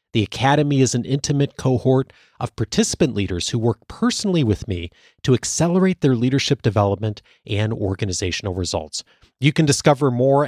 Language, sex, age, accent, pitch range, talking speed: English, male, 40-59, American, 110-155 Hz, 150 wpm